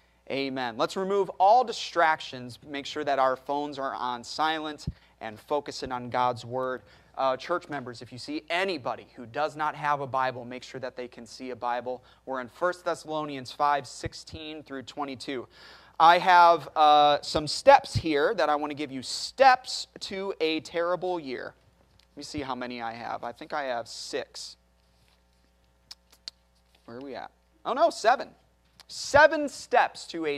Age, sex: 30-49, male